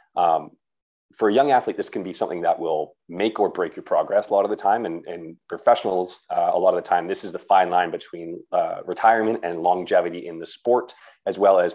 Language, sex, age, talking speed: English, male, 30-49, 235 wpm